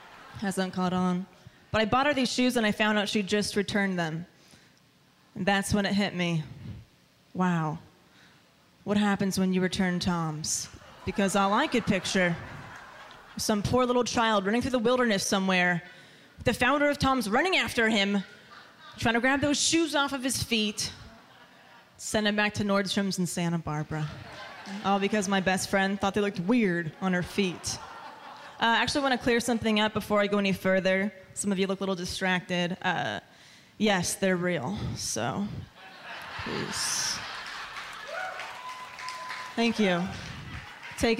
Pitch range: 185-220 Hz